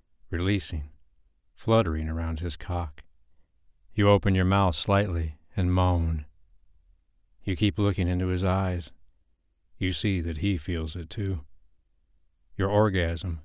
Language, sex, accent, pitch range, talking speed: English, male, American, 80-95 Hz, 120 wpm